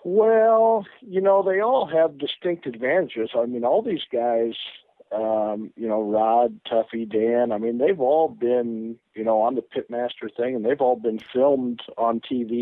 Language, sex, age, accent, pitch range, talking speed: English, male, 50-69, American, 110-125 Hz, 175 wpm